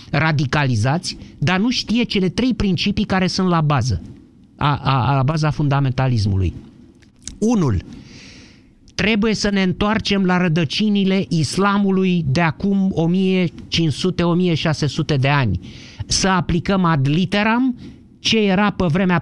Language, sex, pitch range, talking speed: Romanian, male, 140-190 Hz, 110 wpm